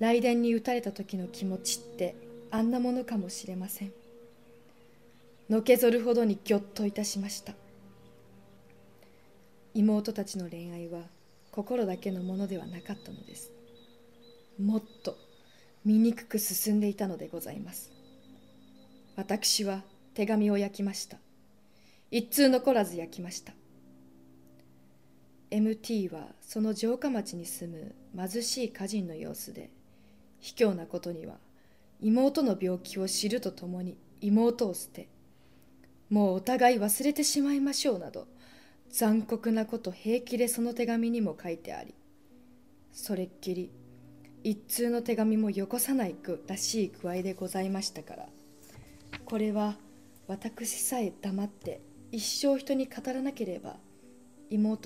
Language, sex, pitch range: Japanese, female, 180-235 Hz